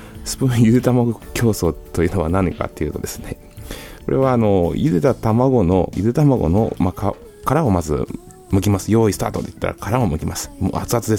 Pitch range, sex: 90-130 Hz, male